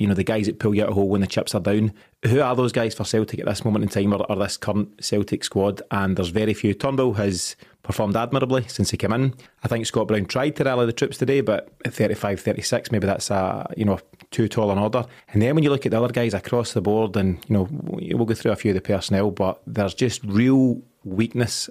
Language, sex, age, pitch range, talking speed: English, male, 30-49, 100-120 Hz, 255 wpm